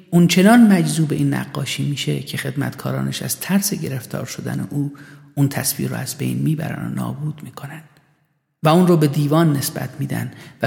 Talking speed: 170 wpm